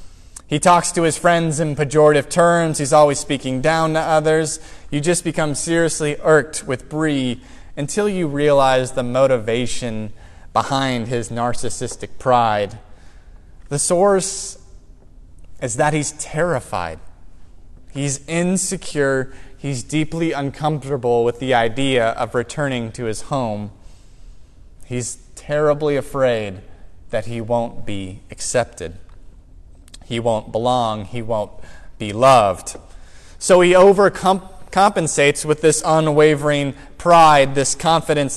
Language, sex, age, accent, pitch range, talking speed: English, male, 20-39, American, 110-155 Hz, 115 wpm